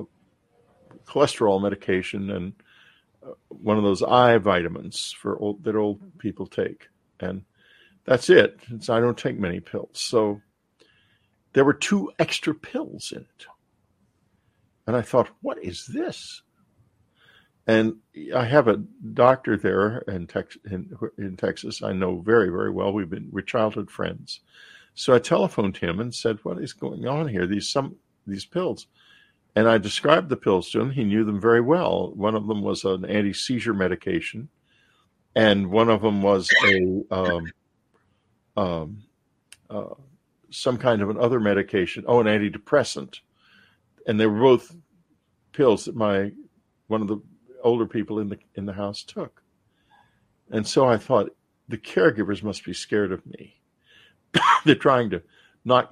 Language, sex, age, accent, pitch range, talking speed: English, male, 50-69, American, 100-115 Hz, 155 wpm